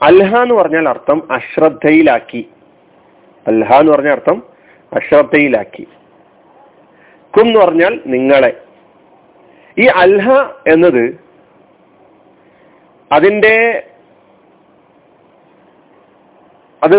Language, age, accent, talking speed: Malayalam, 40-59, native, 65 wpm